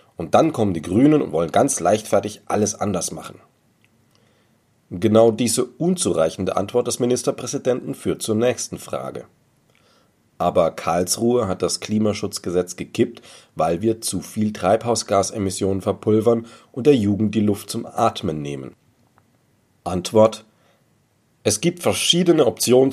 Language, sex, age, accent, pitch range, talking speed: German, male, 40-59, German, 100-125 Hz, 125 wpm